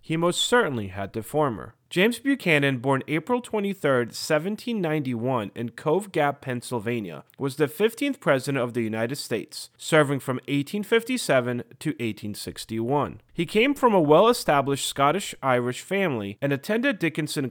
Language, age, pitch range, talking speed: English, 30-49, 120-180 Hz, 135 wpm